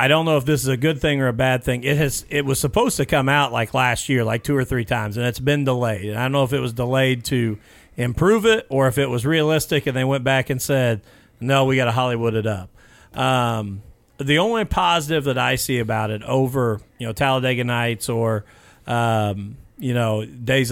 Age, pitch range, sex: 40-59, 120-140 Hz, male